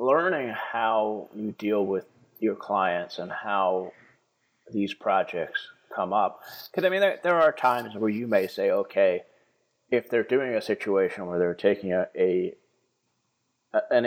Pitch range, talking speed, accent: 95-120 Hz, 155 wpm, American